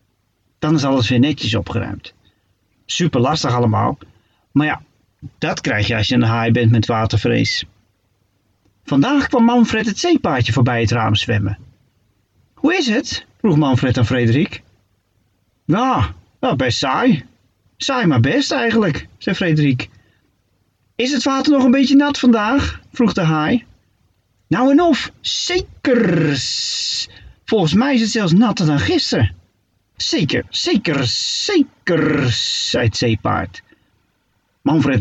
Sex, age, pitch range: male, 40-59, 105-165 Hz